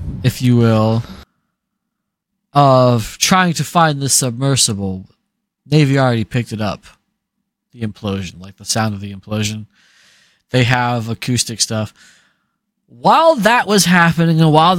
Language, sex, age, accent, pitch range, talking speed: English, male, 20-39, American, 95-150 Hz, 130 wpm